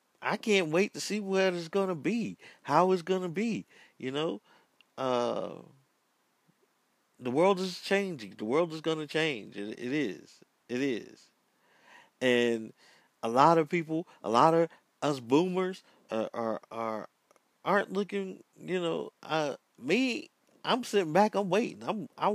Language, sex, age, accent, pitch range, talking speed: English, male, 50-69, American, 120-185 Hz, 155 wpm